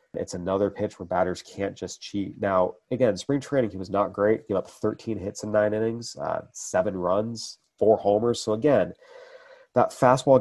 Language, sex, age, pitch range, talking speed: English, male, 30-49, 95-115 Hz, 185 wpm